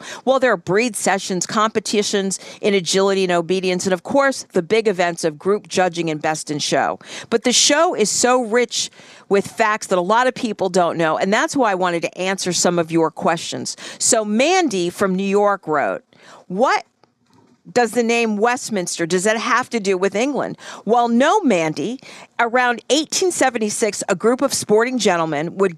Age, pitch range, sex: 50-69, 180-240 Hz, female